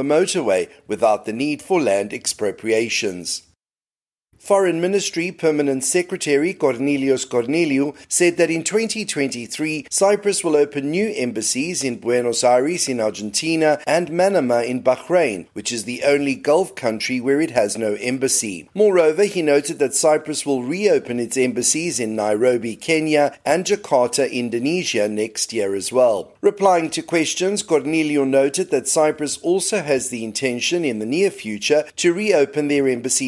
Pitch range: 125-175 Hz